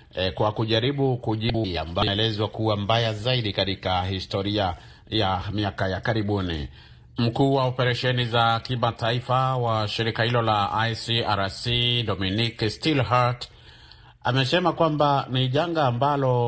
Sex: male